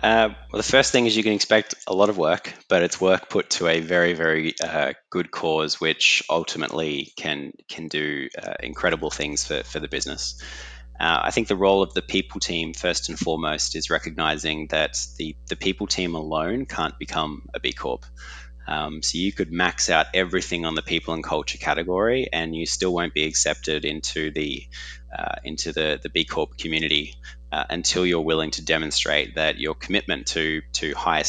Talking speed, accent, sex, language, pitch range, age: 195 wpm, Australian, male, English, 75-90 Hz, 20-39